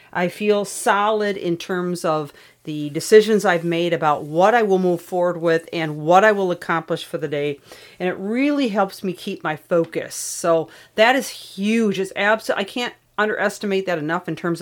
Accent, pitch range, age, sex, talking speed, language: American, 160-195 Hz, 40-59, female, 190 wpm, English